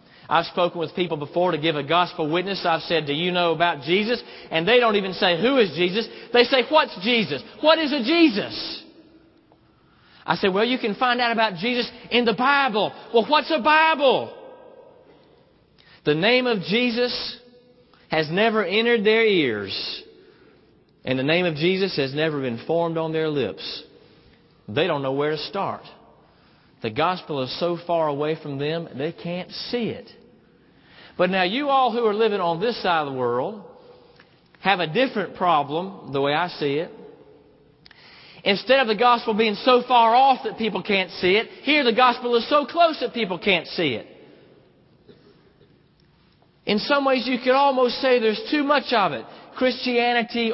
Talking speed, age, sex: 175 wpm, 40-59, male